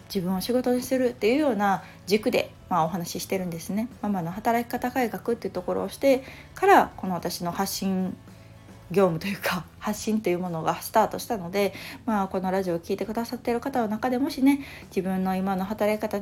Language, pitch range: Japanese, 180-240 Hz